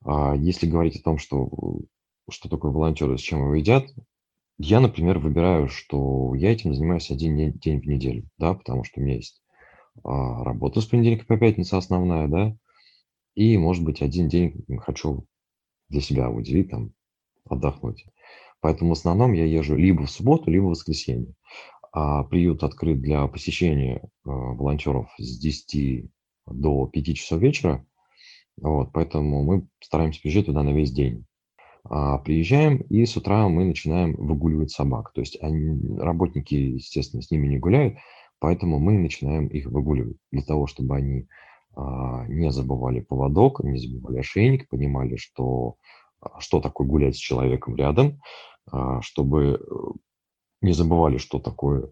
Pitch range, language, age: 70-90 Hz, Russian, 30-49